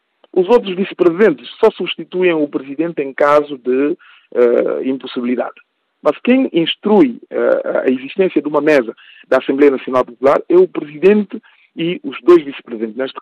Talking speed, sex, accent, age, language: 140 wpm, male, Brazilian, 50-69, Portuguese